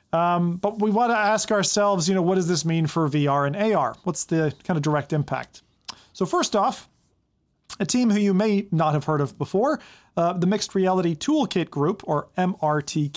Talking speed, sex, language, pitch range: 200 wpm, male, English, 155-195 Hz